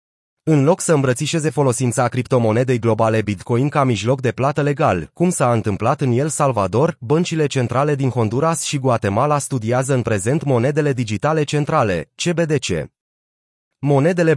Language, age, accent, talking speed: Romanian, 30-49, native, 140 wpm